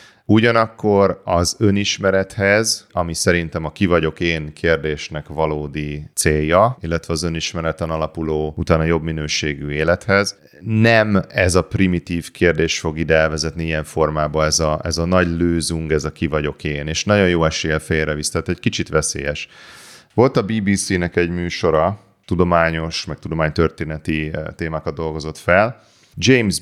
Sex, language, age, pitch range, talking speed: male, Hungarian, 30-49, 80-95 Hz, 140 wpm